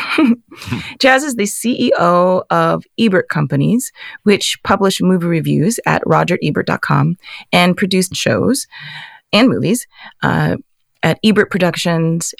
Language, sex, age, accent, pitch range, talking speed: English, female, 30-49, American, 160-215 Hz, 105 wpm